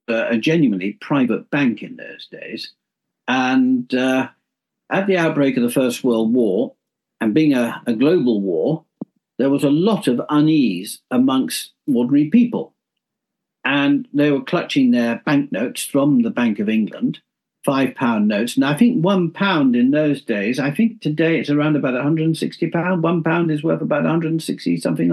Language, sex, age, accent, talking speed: English, male, 60-79, British, 165 wpm